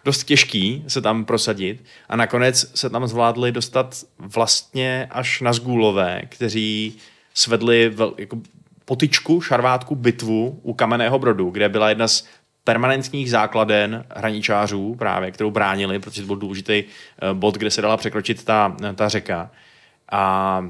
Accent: native